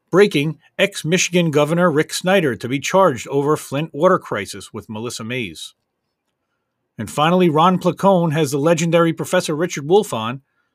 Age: 40-59